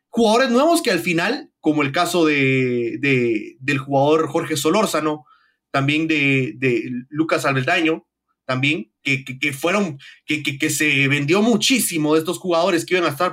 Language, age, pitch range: English, 30-49, 155-210 Hz